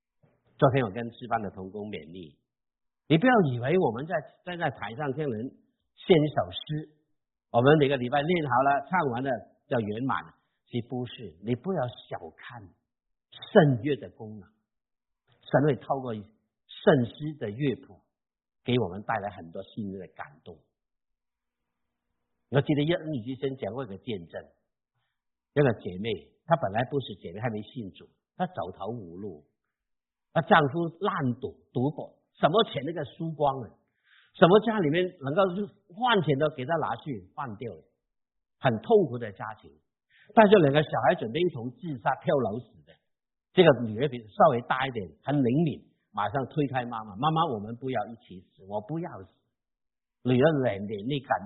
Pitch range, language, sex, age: 105-150 Hz, Chinese, male, 50-69